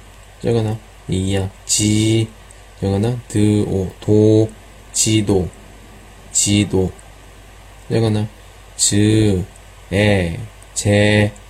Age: 20-39